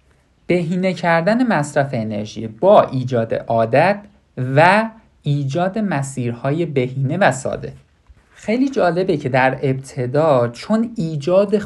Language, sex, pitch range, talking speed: Persian, male, 125-185 Hz, 105 wpm